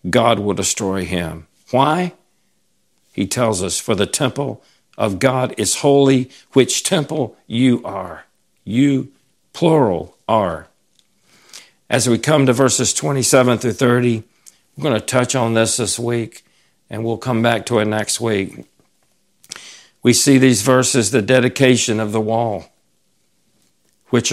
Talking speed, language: 140 wpm, English